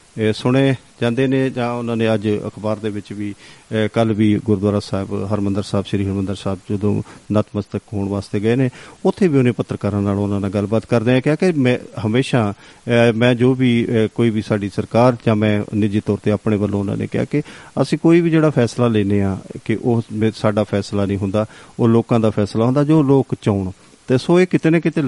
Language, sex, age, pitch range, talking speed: Punjabi, male, 40-59, 105-120 Hz, 205 wpm